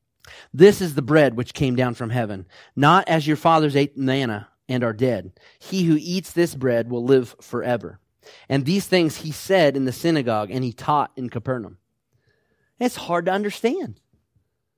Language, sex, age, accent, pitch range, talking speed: English, male, 30-49, American, 135-185 Hz, 175 wpm